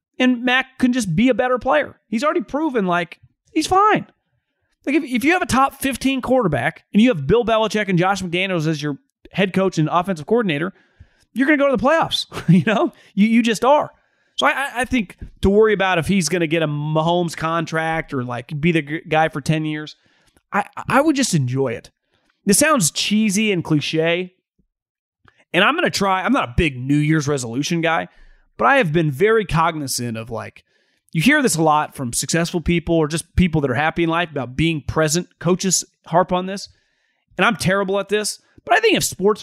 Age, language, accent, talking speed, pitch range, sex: 30-49, English, American, 210 wpm, 160-225 Hz, male